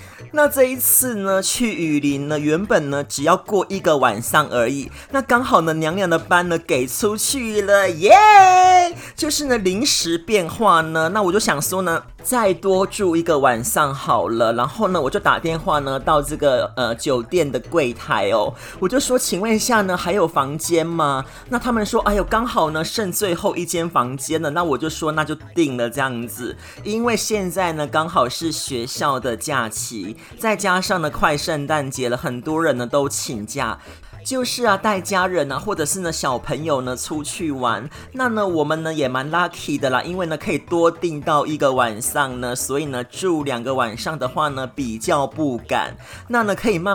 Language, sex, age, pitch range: Chinese, male, 30-49, 140-205 Hz